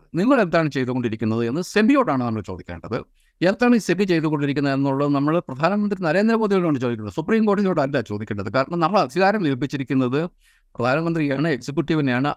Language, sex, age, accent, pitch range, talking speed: Malayalam, male, 50-69, native, 145-205 Hz, 120 wpm